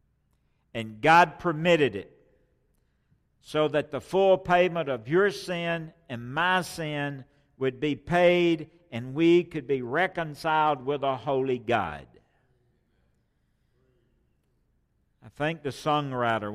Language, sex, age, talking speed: English, male, 60-79, 110 wpm